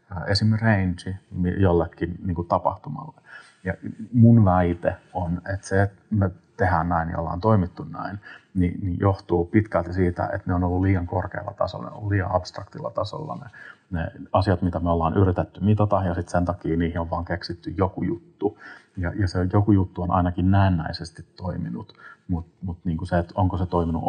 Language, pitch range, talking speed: Finnish, 85-100 Hz, 170 wpm